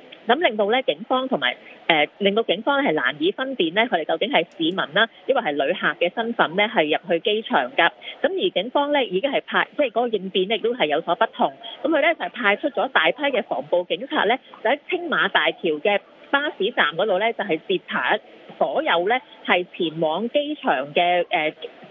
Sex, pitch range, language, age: female, 185-285 Hz, English, 30-49